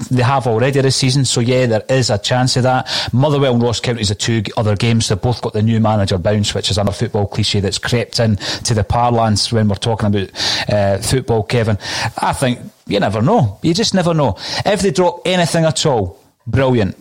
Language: English